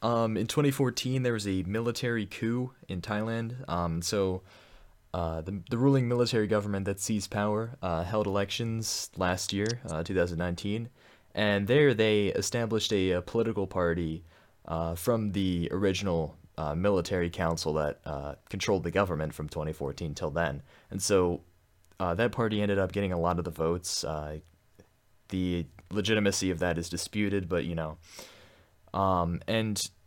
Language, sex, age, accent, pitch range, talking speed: English, male, 20-39, American, 85-110 Hz, 155 wpm